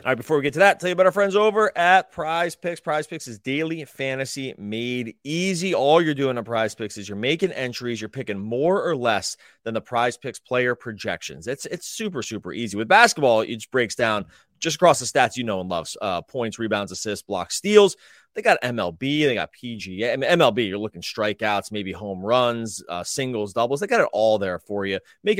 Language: English